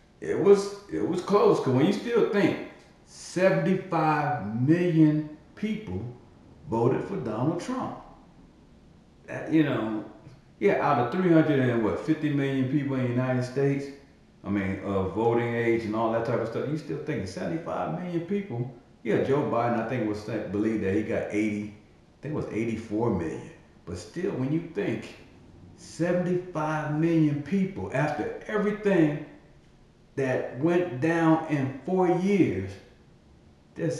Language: English